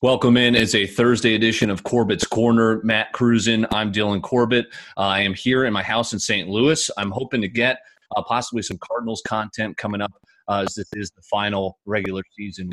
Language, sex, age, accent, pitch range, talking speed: English, male, 30-49, American, 100-120 Hz, 205 wpm